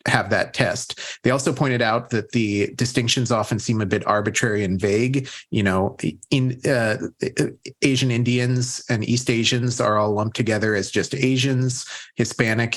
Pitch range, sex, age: 105-125 Hz, male, 30-49